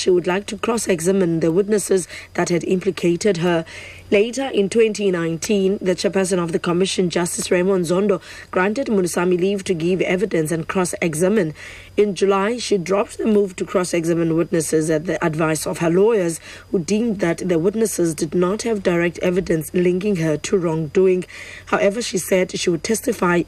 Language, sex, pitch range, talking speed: English, female, 175-205 Hz, 165 wpm